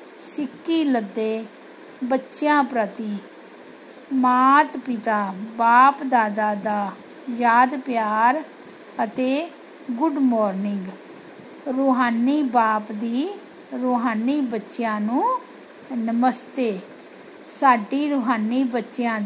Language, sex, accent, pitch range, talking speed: Hindi, female, native, 225-280 Hz, 70 wpm